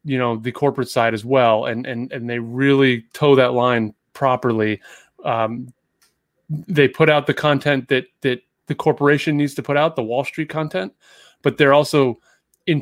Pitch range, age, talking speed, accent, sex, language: 115-145 Hz, 30-49, 180 wpm, American, male, English